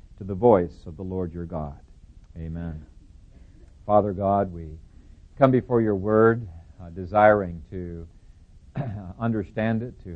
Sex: male